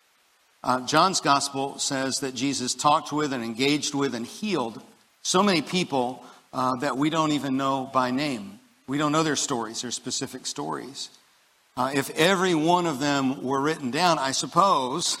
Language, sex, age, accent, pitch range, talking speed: English, male, 50-69, American, 135-165 Hz, 170 wpm